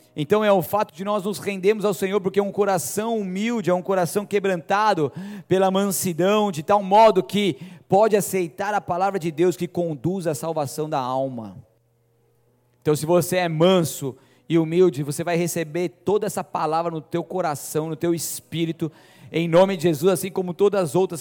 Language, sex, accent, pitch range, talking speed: Portuguese, male, Brazilian, 160-200 Hz, 185 wpm